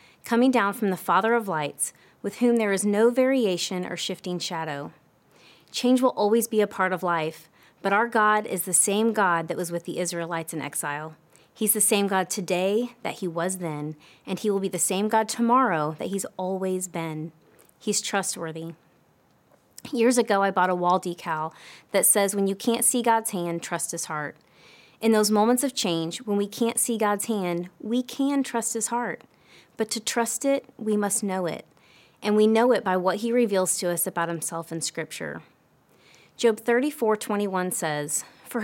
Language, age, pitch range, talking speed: English, 30-49, 175-230 Hz, 190 wpm